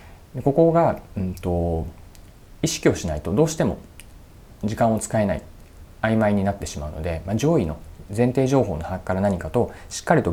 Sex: male